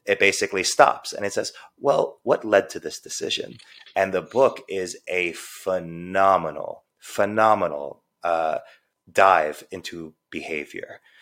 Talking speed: 125 wpm